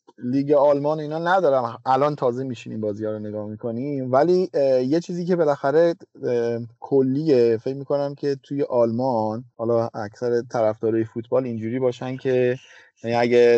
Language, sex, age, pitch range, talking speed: Persian, male, 30-49, 120-145 Hz, 135 wpm